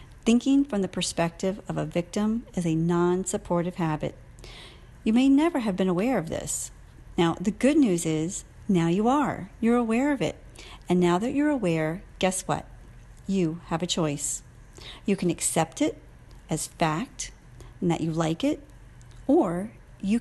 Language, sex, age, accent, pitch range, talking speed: English, female, 40-59, American, 160-205 Hz, 165 wpm